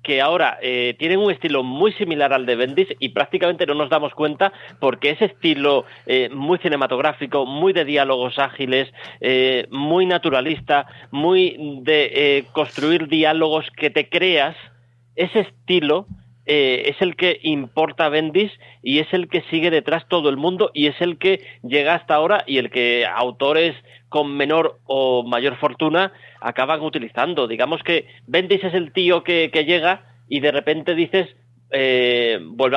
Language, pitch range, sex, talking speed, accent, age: Spanish, 135-160 Hz, male, 165 wpm, Spanish, 40-59